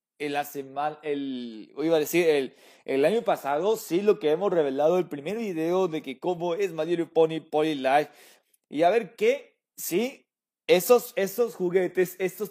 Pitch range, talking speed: 150-205 Hz, 170 wpm